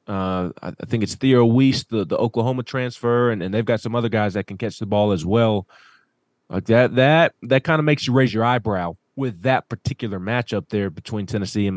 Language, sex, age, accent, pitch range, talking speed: English, male, 20-39, American, 100-130 Hz, 220 wpm